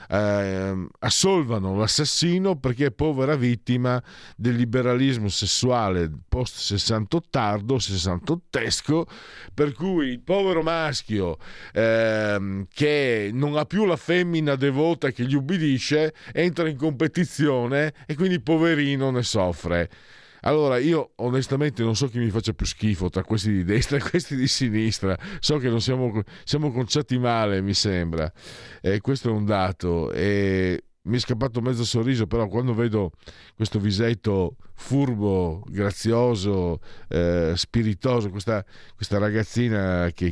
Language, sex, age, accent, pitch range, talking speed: Italian, male, 50-69, native, 90-125 Hz, 130 wpm